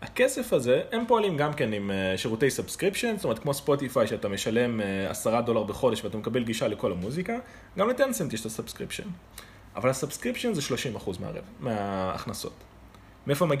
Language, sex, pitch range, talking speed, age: English, male, 105-175 Hz, 130 wpm, 20-39